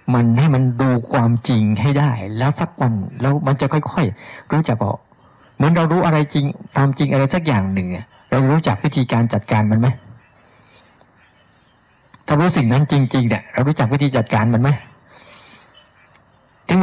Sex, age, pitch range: male, 60-79, 110-145 Hz